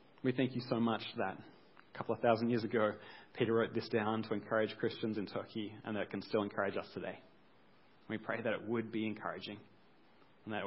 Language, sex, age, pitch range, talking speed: English, male, 30-49, 110-140 Hz, 220 wpm